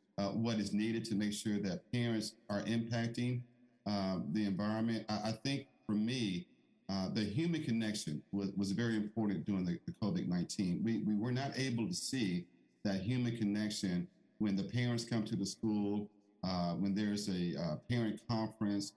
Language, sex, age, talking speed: English, male, 50-69, 175 wpm